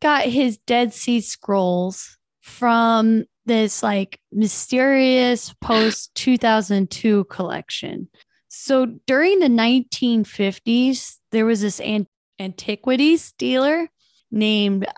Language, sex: English, female